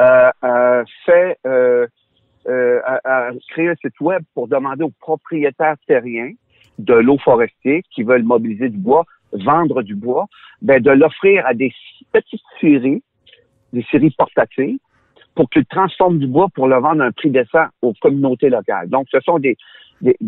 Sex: male